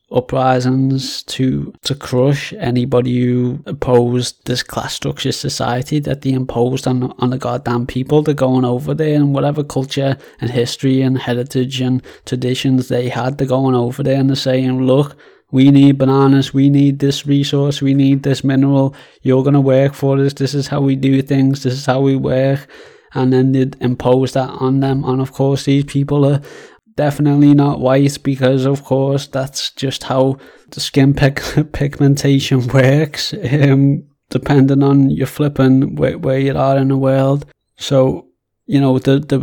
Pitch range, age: 130-140 Hz, 20-39